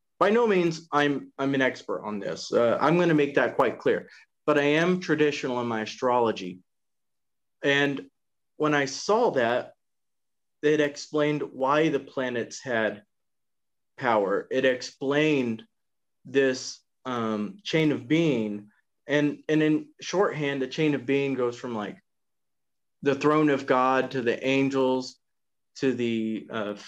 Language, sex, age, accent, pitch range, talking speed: English, male, 30-49, American, 125-150 Hz, 140 wpm